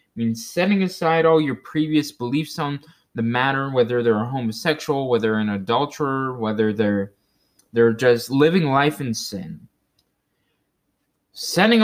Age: 20-39